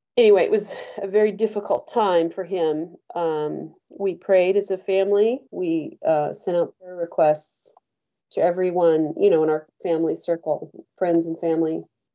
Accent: American